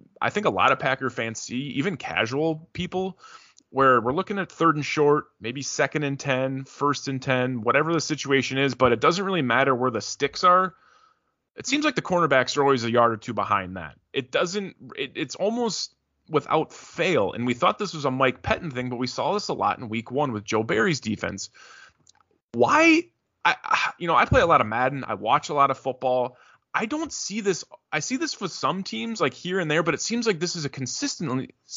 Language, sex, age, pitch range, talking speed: English, male, 20-39, 125-175 Hz, 225 wpm